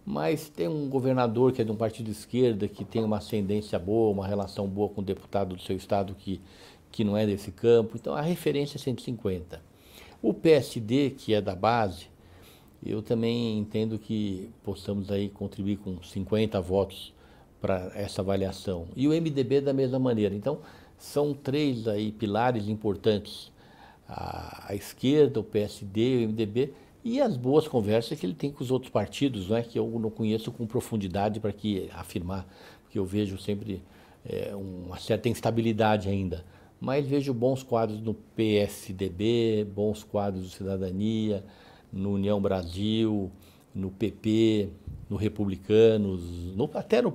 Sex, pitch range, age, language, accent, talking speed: male, 100-120 Hz, 60-79, Portuguese, Brazilian, 160 wpm